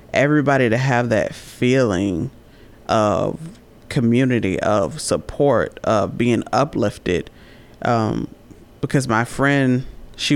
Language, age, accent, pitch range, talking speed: English, 30-49, American, 115-135 Hz, 100 wpm